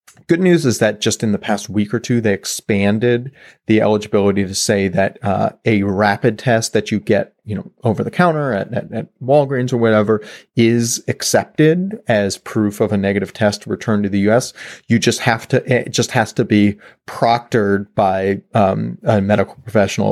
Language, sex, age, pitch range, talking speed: English, male, 30-49, 100-120 Hz, 190 wpm